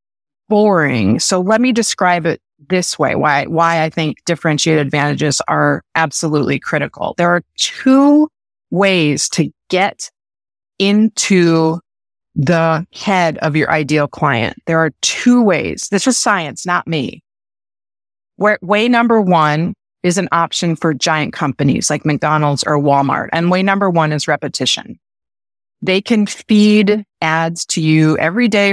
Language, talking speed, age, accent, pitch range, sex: English, 140 wpm, 30-49, American, 150-200 Hz, female